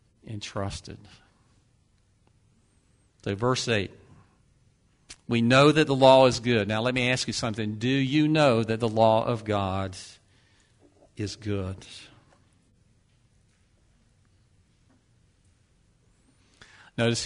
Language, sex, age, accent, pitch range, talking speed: English, male, 50-69, American, 105-125 Hz, 95 wpm